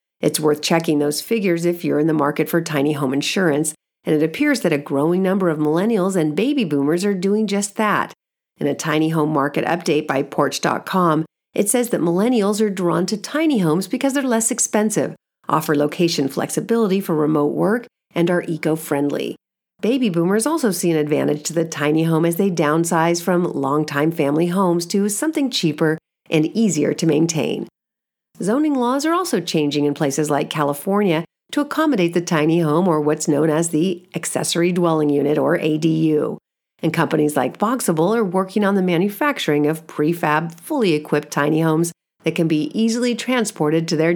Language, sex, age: English, female, 40-59